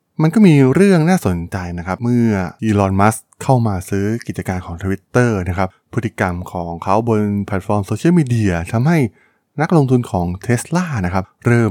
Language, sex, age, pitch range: Thai, male, 20-39, 95-120 Hz